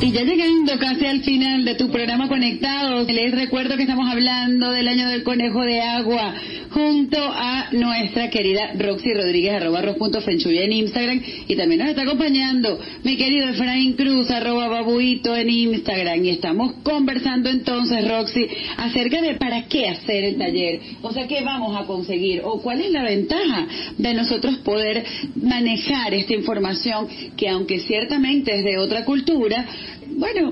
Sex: female